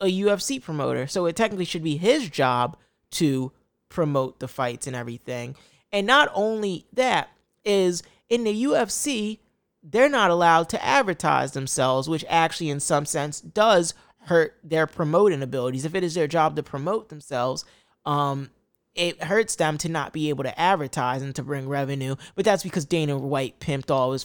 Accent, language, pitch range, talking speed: American, English, 140-195 Hz, 175 wpm